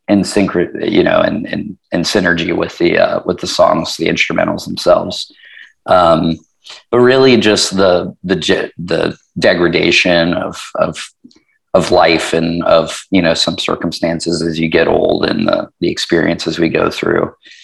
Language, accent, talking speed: English, American, 155 wpm